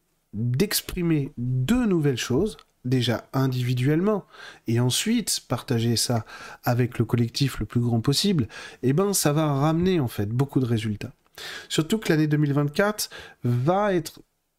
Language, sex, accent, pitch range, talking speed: French, male, French, 110-150 Hz, 135 wpm